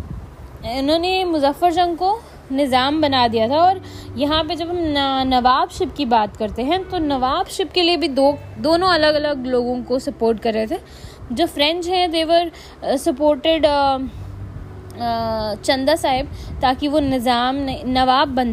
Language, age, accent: Hindi, 20-39, native